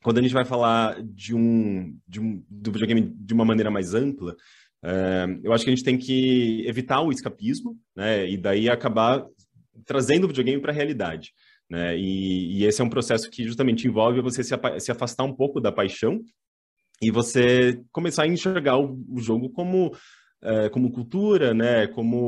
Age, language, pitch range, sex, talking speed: 30-49, Portuguese, 100-125 Hz, male, 185 wpm